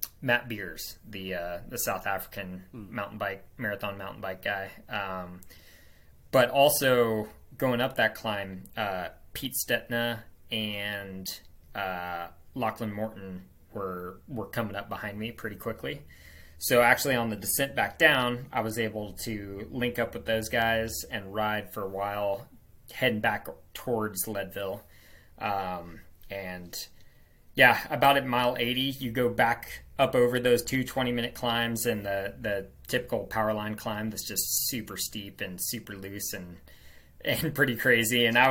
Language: English